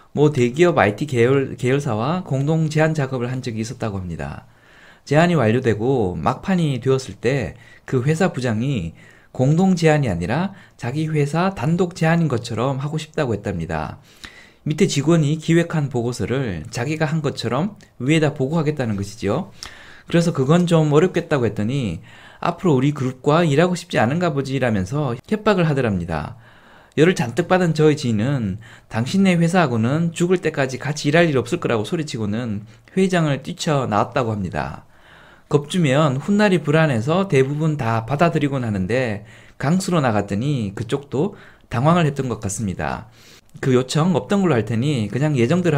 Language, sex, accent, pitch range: Korean, male, native, 115-165 Hz